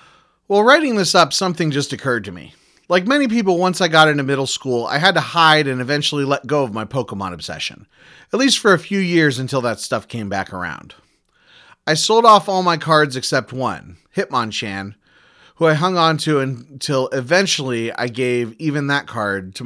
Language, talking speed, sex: English, 195 wpm, male